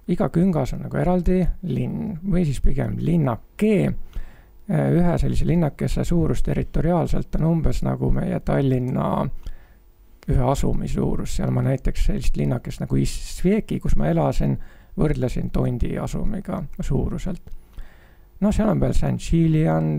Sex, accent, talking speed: male, Finnish, 125 wpm